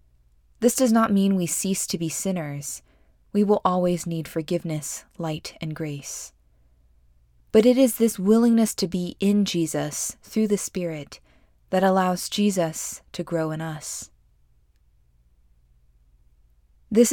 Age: 20-39